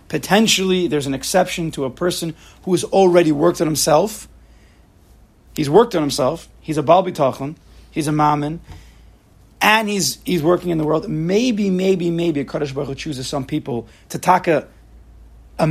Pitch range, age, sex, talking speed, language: 120-180 Hz, 30-49, male, 160 wpm, English